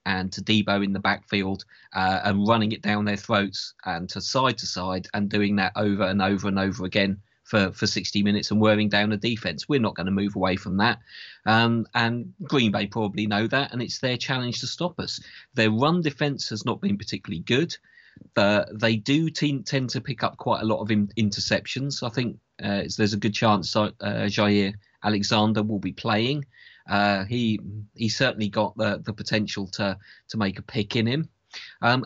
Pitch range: 100-120 Hz